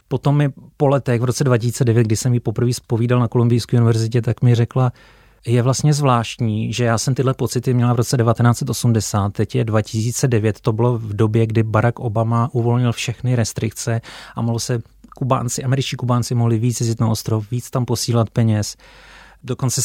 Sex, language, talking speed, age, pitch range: male, Czech, 180 wpm, 30-49, 115-130 Hz